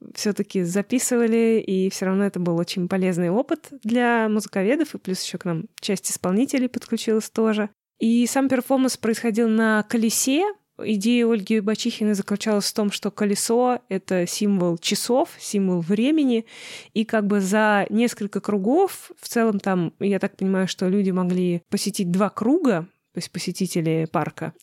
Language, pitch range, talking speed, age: Russian, 190-235 Hz, 150 wpm, 20-39